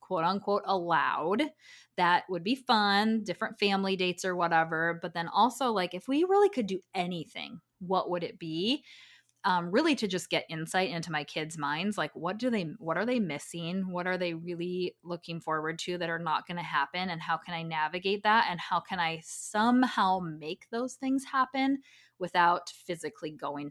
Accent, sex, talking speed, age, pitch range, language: American, female, 190 wpm, 20-39, 165-205 Hz, English